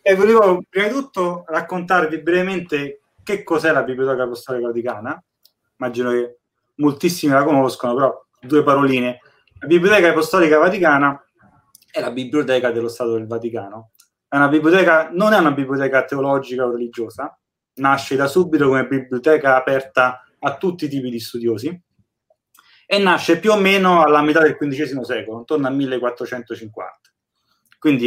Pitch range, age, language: 130-165 Hz, 30-49, Italian